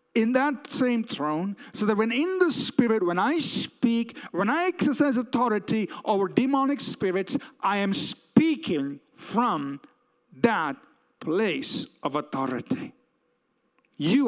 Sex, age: male, 50-69